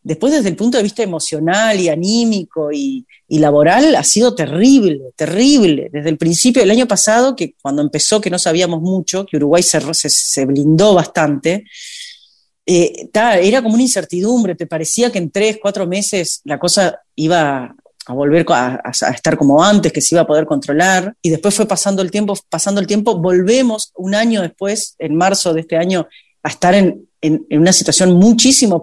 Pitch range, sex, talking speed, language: 155-215 Hz, female, 185 wpm, Spanish